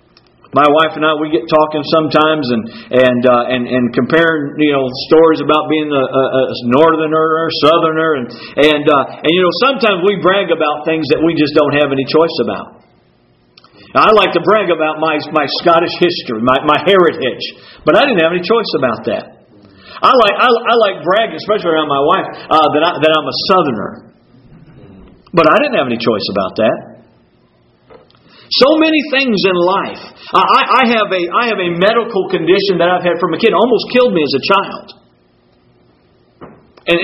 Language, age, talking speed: English, 50-69, 190 wpm